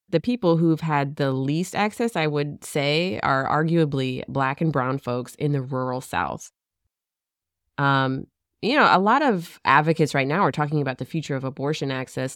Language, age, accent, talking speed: English, 20-39, American, 180 wpm